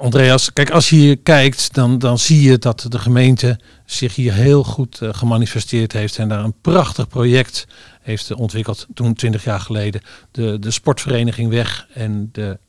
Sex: male